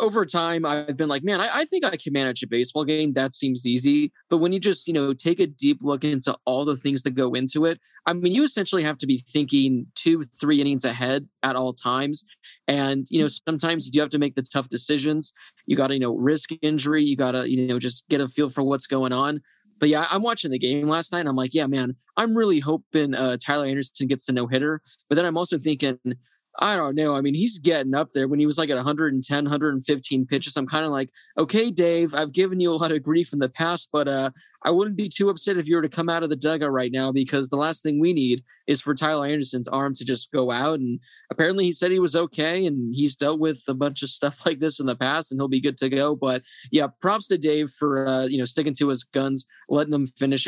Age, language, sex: 20-39, English, male